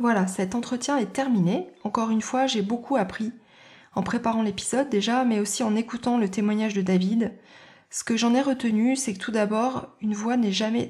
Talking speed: 200 wpm